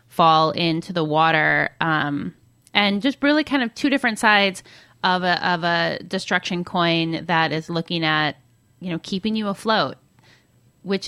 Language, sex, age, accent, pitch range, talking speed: English, female, 20-39, American, 165-205 Hz, 155 wpm